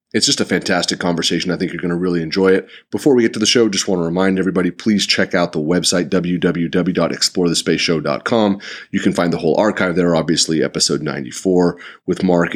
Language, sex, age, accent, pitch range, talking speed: English, male, 30-49, American, 85-100 Hz, 200 wpm